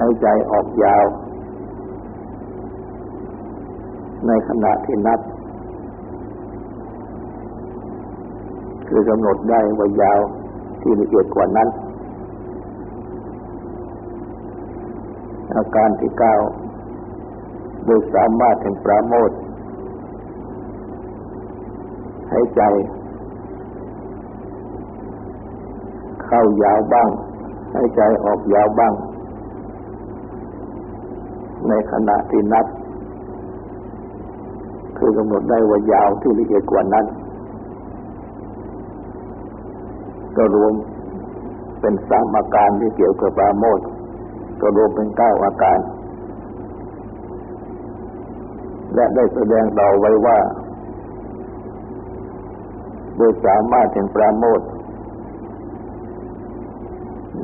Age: 60-79